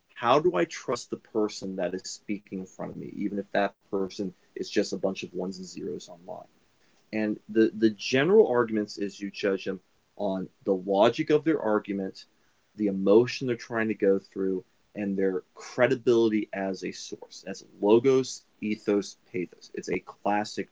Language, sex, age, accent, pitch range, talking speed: English, male, 30-49, American, 100-135 Hz, 175 wpm